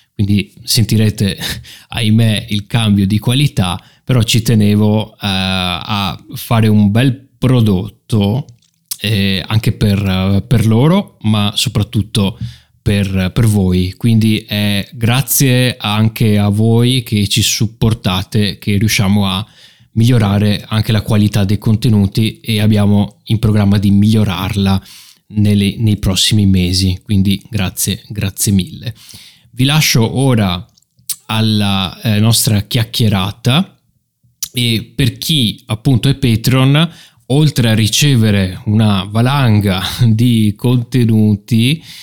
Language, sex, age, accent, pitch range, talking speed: Italian, male, 20-39, native, 100-120 Hz, 110 wpm